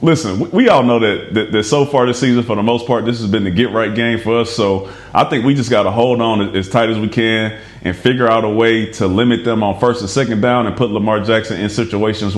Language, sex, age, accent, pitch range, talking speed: English, male, 30-49, American, 105-125 Hz, 270 wpm